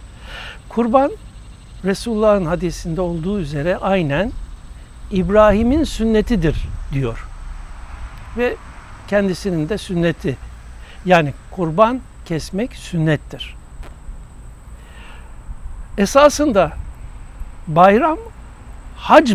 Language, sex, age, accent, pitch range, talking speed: Turkish, male, 60-79, native, 135-215 Hz, 60 wpm